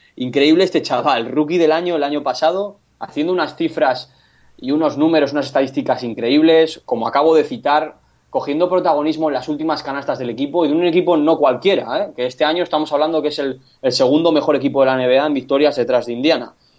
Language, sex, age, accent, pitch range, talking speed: Spanish, male, 20-39, Spanish, 130-160 Hz, 200 wpm